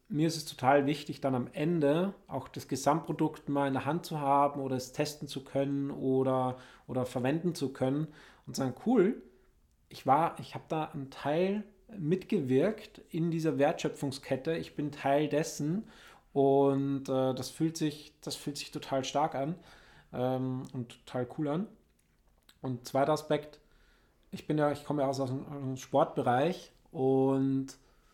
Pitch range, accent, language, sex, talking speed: 135-160 Hz, German, German, male, 160 wpm